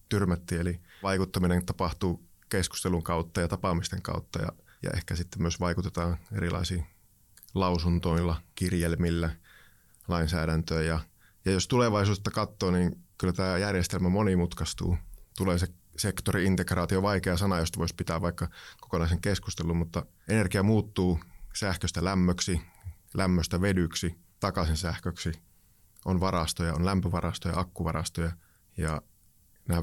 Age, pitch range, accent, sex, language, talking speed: 30-49, 85-100 Hz, native, male, Finnish, 115 wpm